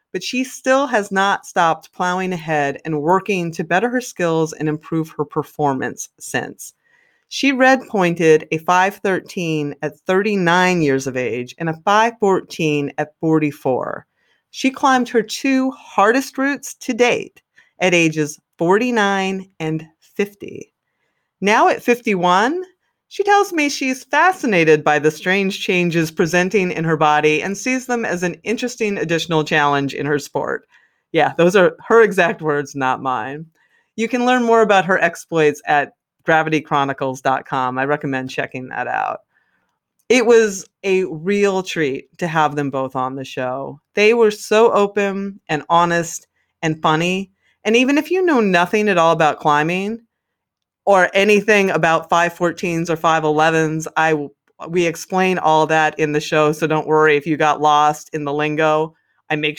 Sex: female